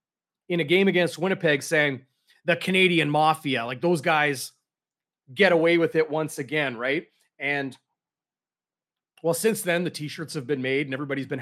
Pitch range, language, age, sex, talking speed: 145-175 Hz, English, 30-49, male, 165 wpm